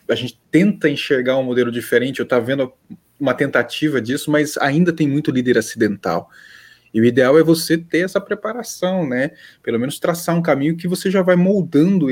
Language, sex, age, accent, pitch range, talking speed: Portuguese, male, 20-39, Brazilian, 120-170 Hz, 190 wpm